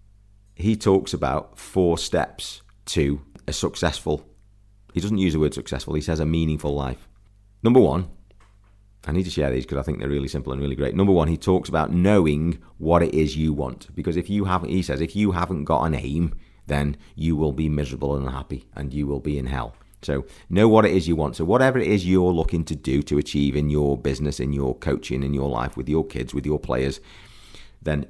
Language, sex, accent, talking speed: English, male, British, 220 wpm